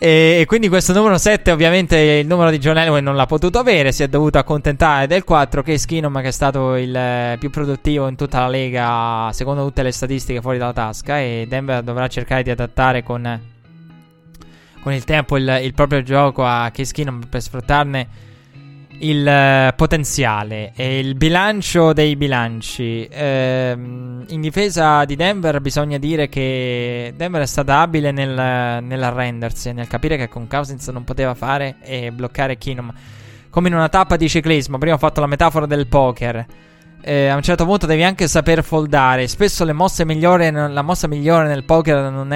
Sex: male